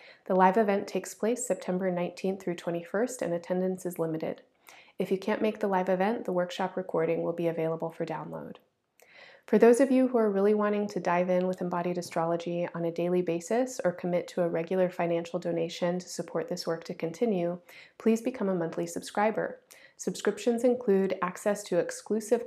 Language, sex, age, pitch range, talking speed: English, female, 30-49, 170-210 Hz, 185 wpm